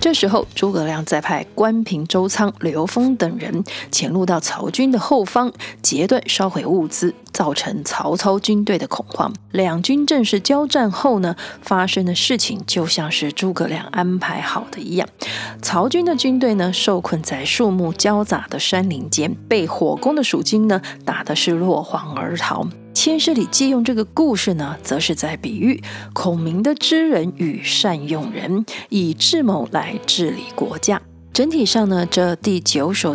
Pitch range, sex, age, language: 175-250 Hz, female, 30-49, Chinese